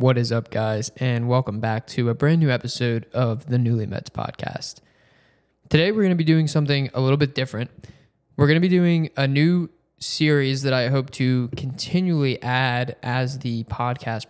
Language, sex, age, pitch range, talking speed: English, male, 20-39, 130-155 Hz, 190 wpm